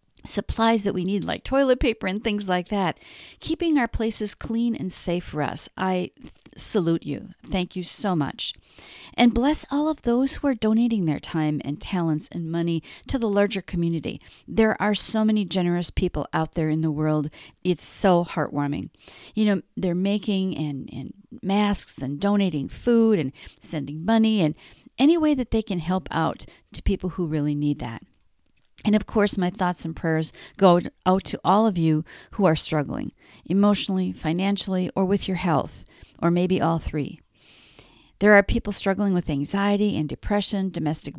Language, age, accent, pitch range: English, 50-69, American, 165-220 Hz